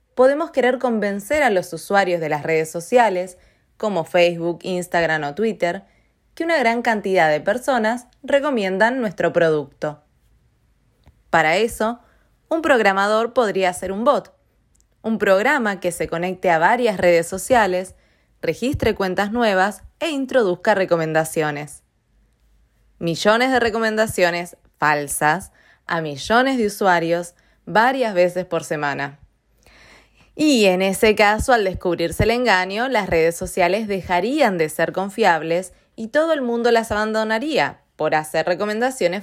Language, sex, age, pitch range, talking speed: Spanish, female, 20-39, 170-235 Hz, 125 wpm